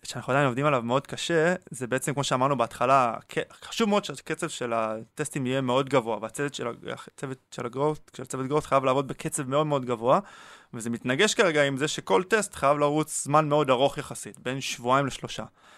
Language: Hebrew